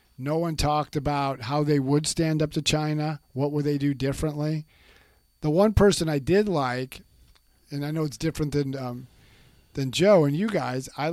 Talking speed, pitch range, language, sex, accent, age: 190 wpm, 135-165 Hz, English, male, American, 50-69